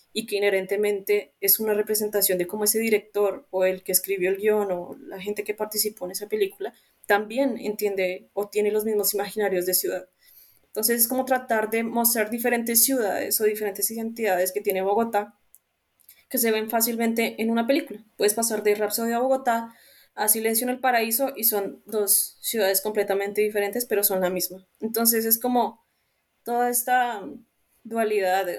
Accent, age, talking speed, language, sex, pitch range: Colombian, 20-39, 170 wpm, Spanish, female, 200-230 Hz